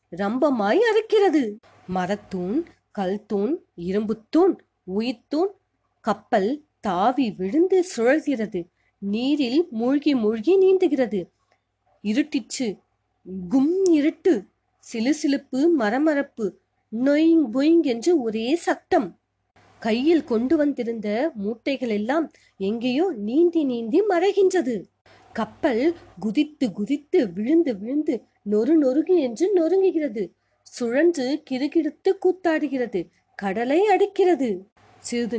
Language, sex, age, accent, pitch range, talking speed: Tamil, female, 30-49, native, 215-325 Hz, 65 wpm